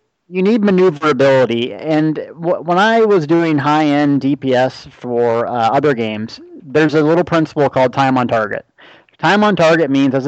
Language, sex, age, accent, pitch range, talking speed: English, male, 30-49, American, 125-160 Hz, 165 wpm